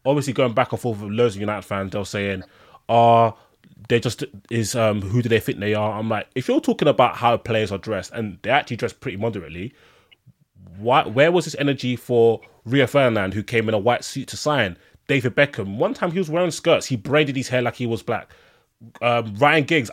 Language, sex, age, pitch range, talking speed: English, male, 20-39, 110-140 Hz, 225 wpm